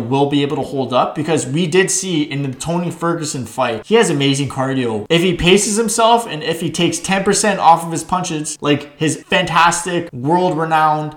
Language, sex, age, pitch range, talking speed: English, male, 20-39, 140-175 Hz, 195 wpm